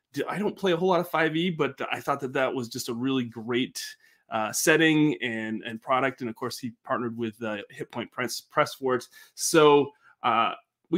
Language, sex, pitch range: English, male, 120-160 Hz